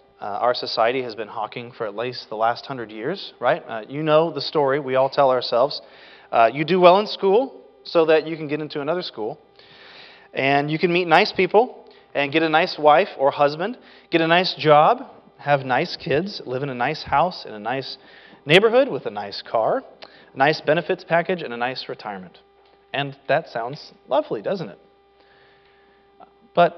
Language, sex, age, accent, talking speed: English, male, 30-49, American, 190 wpm